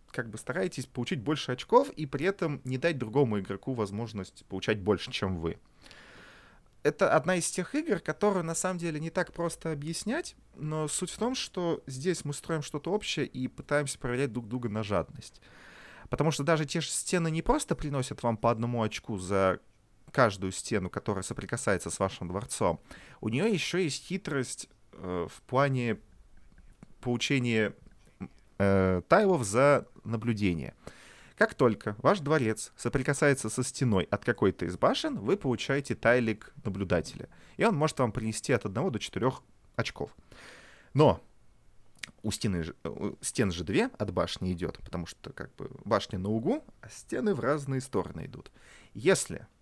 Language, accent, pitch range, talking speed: Russian, native, 100-155 Hz, 155 wpm